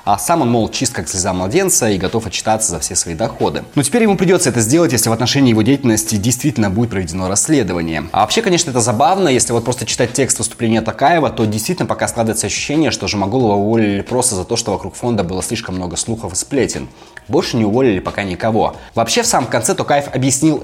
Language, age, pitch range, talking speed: Russian, 20-39, 100-135 Hz, 215 wpm